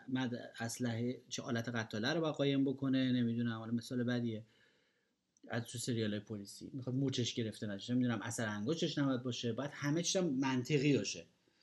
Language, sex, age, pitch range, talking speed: Persian, male, 30-49, 125-180 Hz, 150 wpm